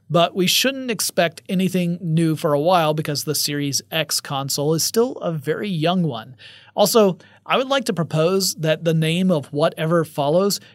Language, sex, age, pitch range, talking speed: English, male, 30-49, 150-180 Hz, 180 wpm